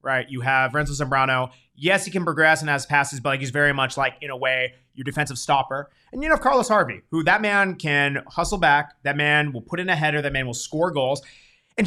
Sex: male